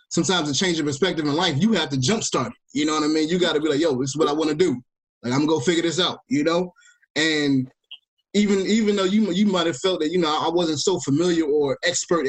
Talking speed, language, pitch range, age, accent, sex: 270 wpm, English, 145-200 Hz, 20-39, American, male